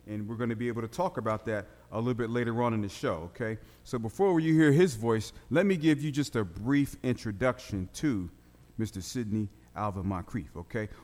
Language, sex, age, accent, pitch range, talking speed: English, male, 40-59, American, 105-125 Hz, 205 wpm